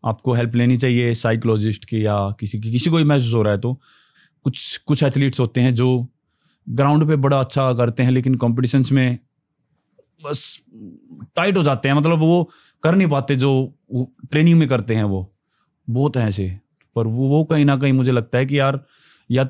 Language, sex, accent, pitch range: Hindi, male, native, 130-165 Hz